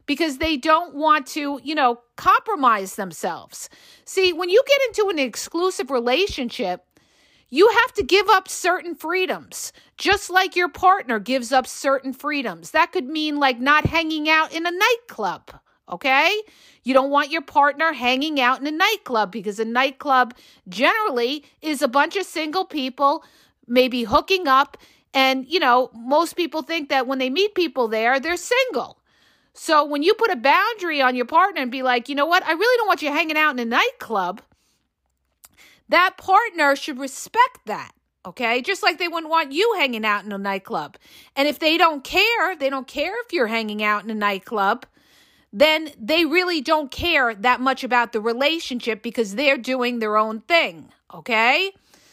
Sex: female